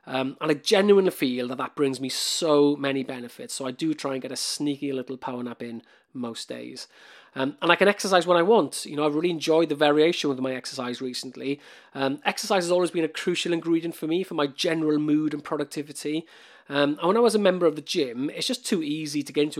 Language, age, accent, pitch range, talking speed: English, 30-49, British, 130-165 Hz, 240 wpm